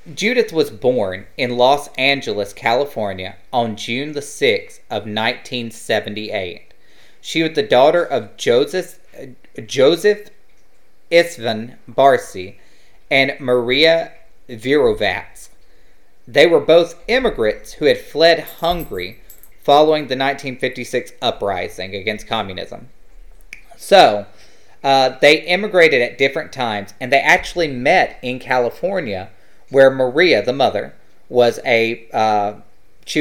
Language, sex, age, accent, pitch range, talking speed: English, male, 30-49, American, 115-165 Hz, 110 wpm